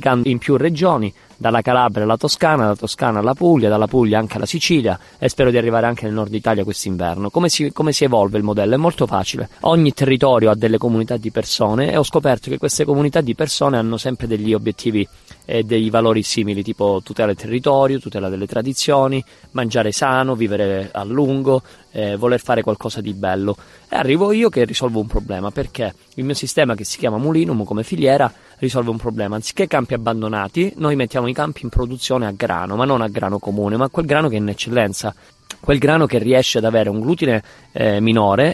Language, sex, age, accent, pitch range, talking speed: Italian, male, 20-39, native, 105-135 Hz, 200 wpm